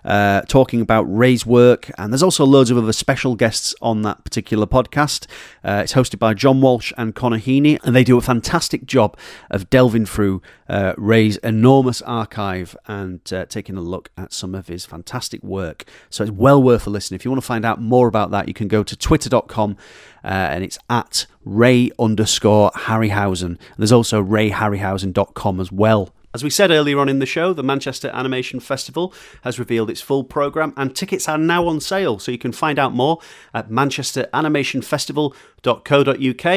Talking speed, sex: 185 wpm, male